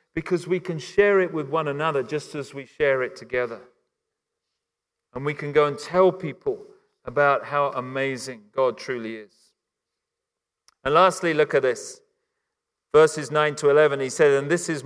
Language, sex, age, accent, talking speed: English, male, 40-59, British, 165 wpm